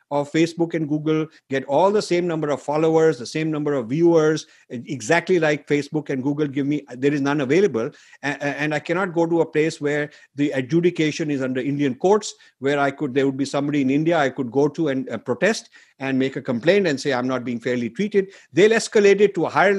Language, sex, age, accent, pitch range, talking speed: English, male, 50-69, Indian, 140-190 Hz, 225 wpm